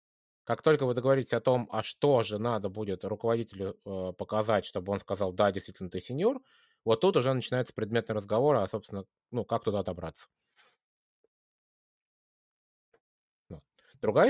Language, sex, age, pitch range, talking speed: Russian, male, 20-39, 100-135 Hz, 140 wpm